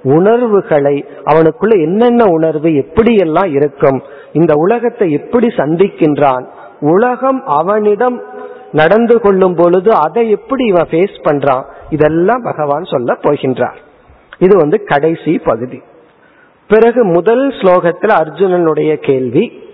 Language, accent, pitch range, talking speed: Tamil, native, 155-210 Hz, 100 wpm